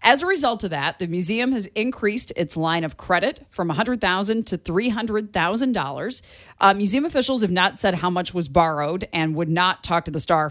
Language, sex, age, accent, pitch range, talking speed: English, female, 30-49, American, 170-235 Hz, 195 wpm